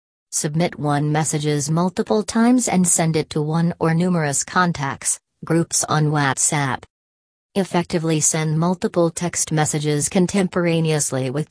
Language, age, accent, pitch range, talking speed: English, 40-59, American, 130-170 Hz, 120 wpm